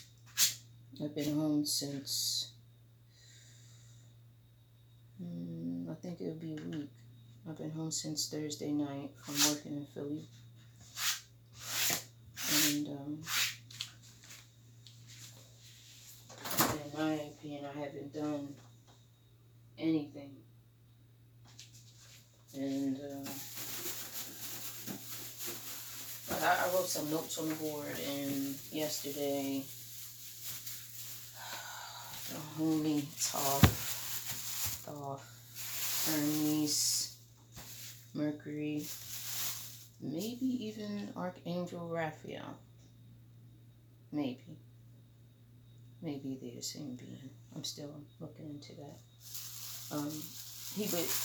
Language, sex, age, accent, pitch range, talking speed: English, female, 20-39, American, 115-150 Hz, 75 wpm